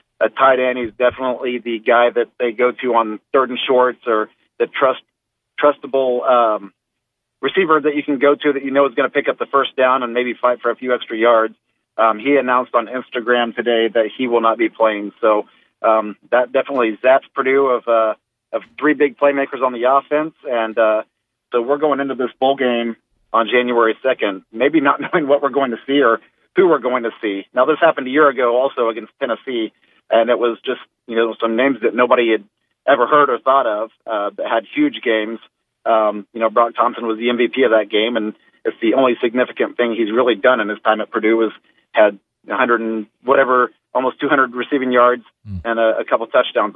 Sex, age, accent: male, 40-59, American